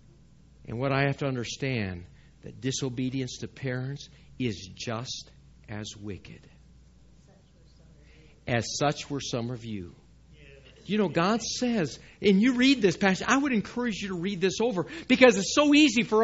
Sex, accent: male, American